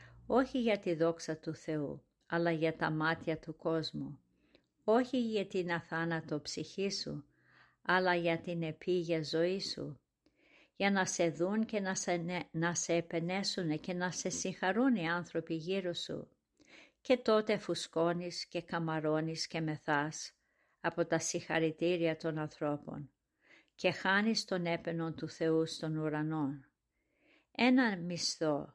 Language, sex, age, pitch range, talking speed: Greek, female, 50-69, 160-190 Hz, 130 wpm